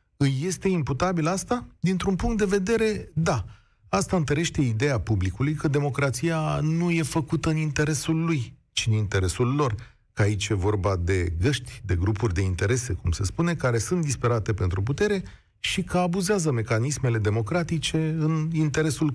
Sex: male